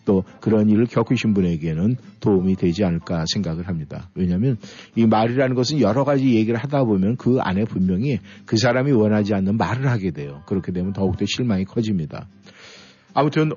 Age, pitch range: 50-69, 95-135 Hz